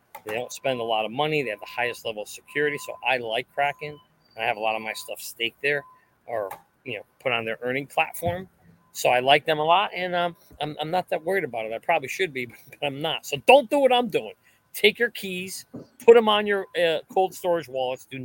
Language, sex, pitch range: English, male, 130-175 Hz